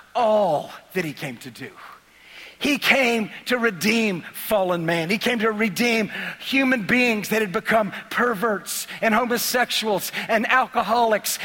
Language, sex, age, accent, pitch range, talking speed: English, male, 40-59, American, 230-295 Hz, 135 wpm